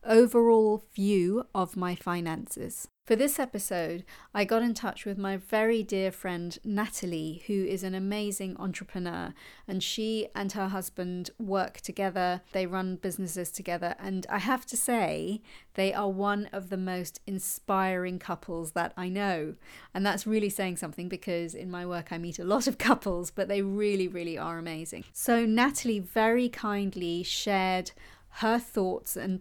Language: English